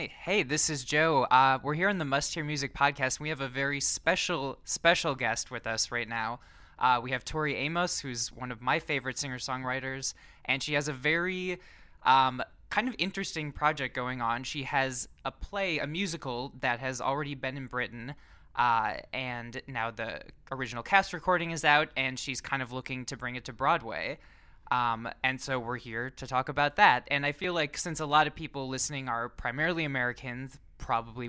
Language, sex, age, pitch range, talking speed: English, male, 20-39, 120-150 Hz, 195 wpm